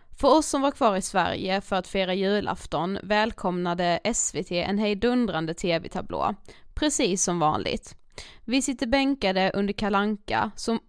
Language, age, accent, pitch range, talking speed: Swedish, 20-39, native, 190-265 Hz, 140 wpm